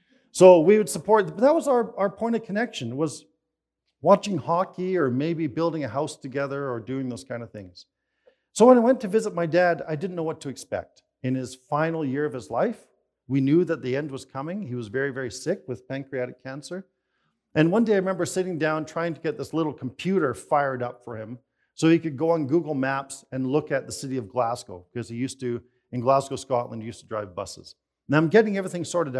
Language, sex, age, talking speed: English, male, 50-69, 230 wpm